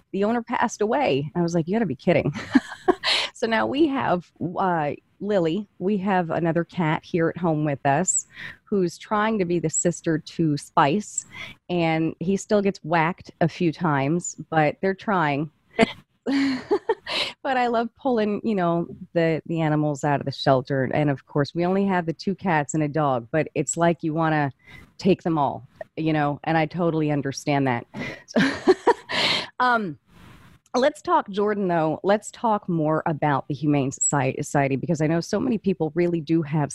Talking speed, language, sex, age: 175 wpm, English, female, 30-49